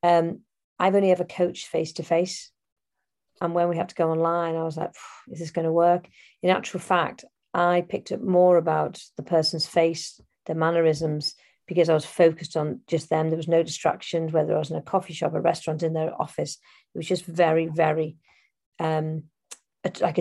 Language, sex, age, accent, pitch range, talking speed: English, female, 40-59, British, 160-185 Hz, 200 wpm